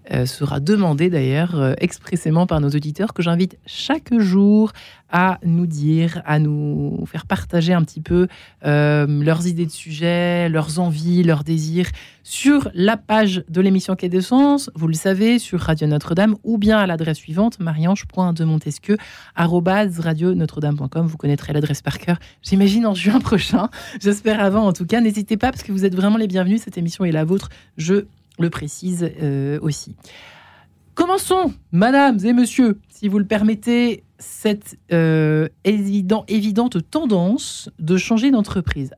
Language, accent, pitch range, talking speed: French, French, 165-215 Hz, 155 wpm